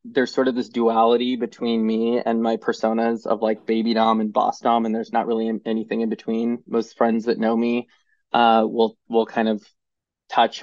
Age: 20-39